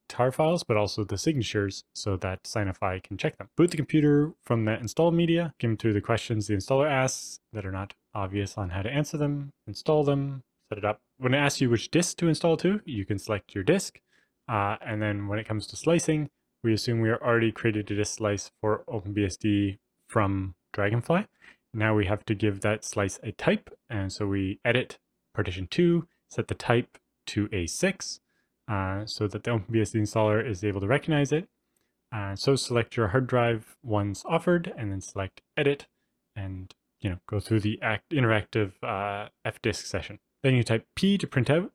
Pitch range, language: 105-135 Hz, English